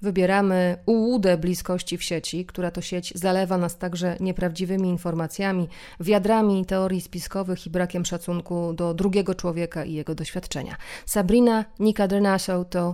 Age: 30-49